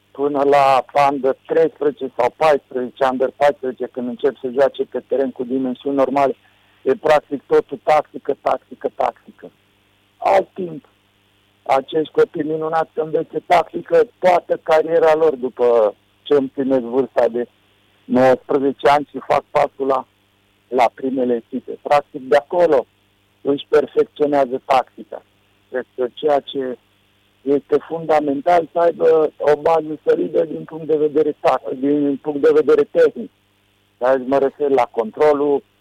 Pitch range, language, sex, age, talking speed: 115-145 Hz, Romanian, male, 50-69, 130 wpm